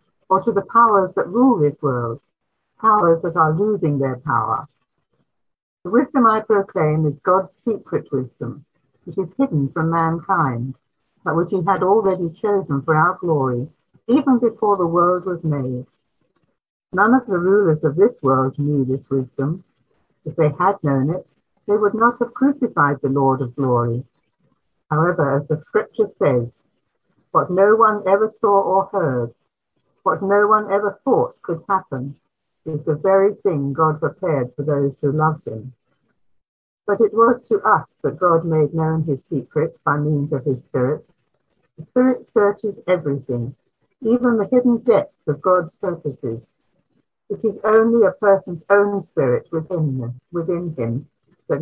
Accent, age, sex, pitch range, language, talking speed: British, 60-79, female, 140-200 Hz, English, 155 wpm